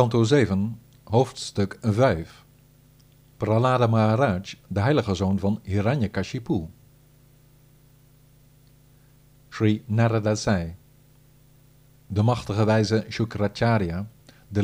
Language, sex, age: Dutch, male, 50-69